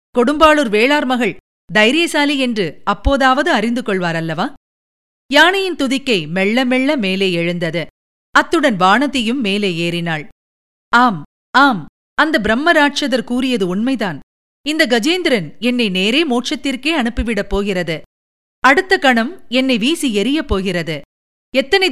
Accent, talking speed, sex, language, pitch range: native, 105 wpm, female, Tamil, 190-290 Hz